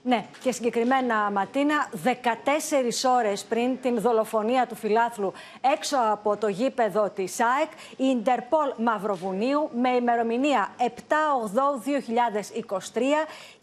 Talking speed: 100 wpm